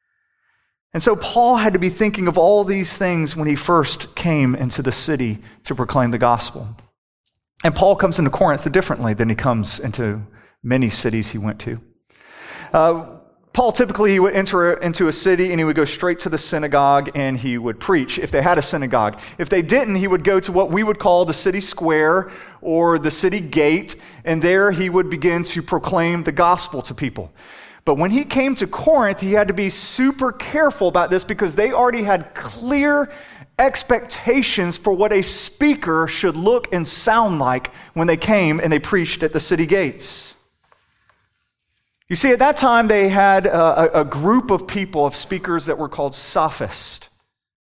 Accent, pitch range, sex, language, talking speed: American, 145-200 Hz, male, English, 185 wpm